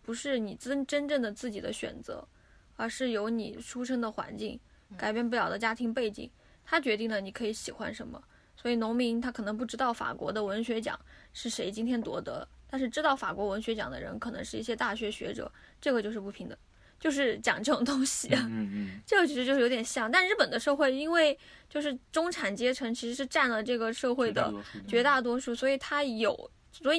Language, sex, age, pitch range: Chinese, female, 10-29, 225-280 Hz